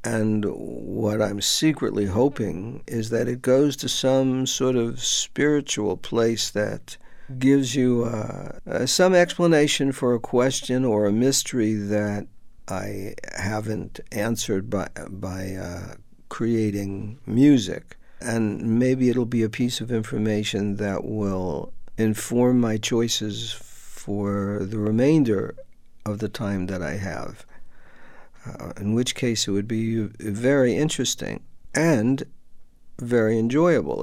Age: 60-79